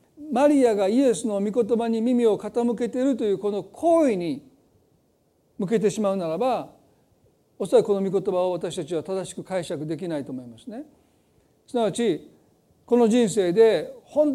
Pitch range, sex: 195-260 Hz, male